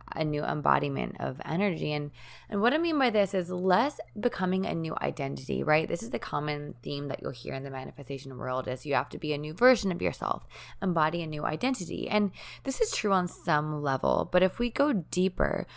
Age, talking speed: 20-39, 215 wpm